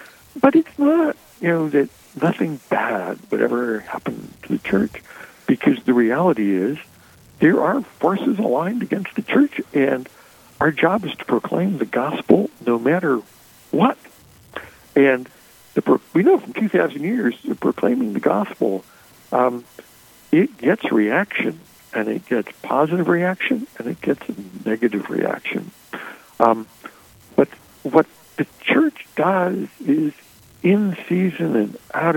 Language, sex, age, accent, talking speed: English, male, 60-79, American, 140 wpm